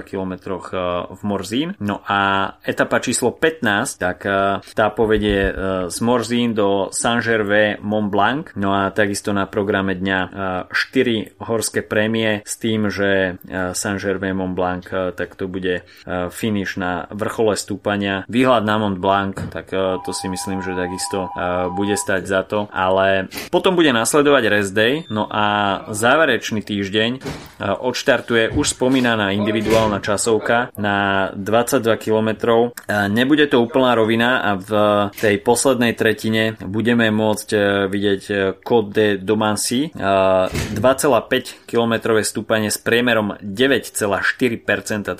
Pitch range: 95-110 Hz